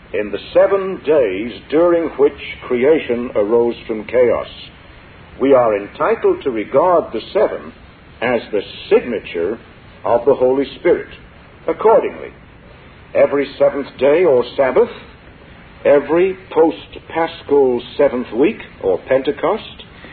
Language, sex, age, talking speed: English, male, 60-79, 105 wpm